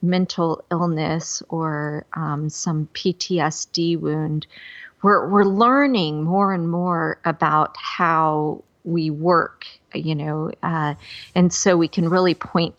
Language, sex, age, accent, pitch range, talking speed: English, female, 40-59, American, 160-195 Hz, 120 wpm